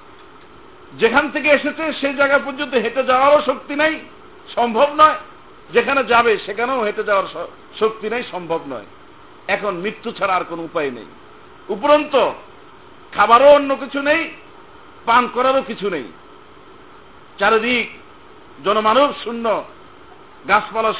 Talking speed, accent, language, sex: 115 wpm, native, Bengali, male